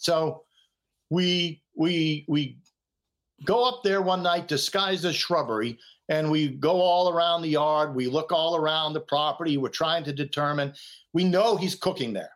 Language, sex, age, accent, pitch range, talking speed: English, male, 50-69, American, 140-175 Hz, 165 wpm